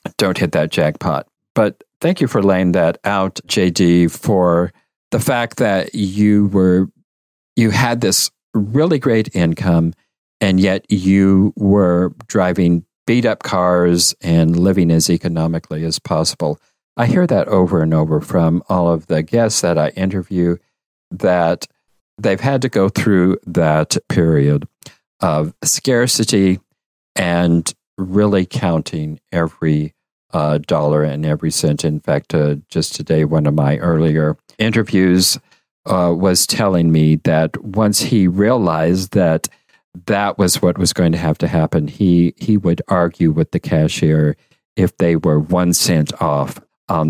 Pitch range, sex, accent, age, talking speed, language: 80-100 Hz, male, American, 50-69, 145 wpm, English